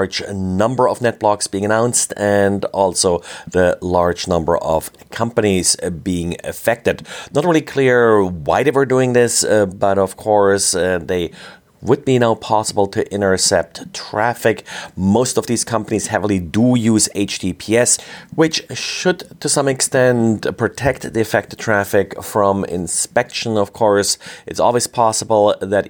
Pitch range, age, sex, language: 95-115 Hz, 40-59, male, English